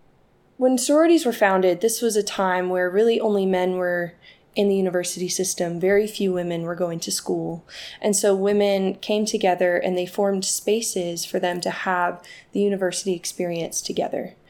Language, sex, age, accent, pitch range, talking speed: English, female, 20-39, American, 180-215 Hz, 170 wpm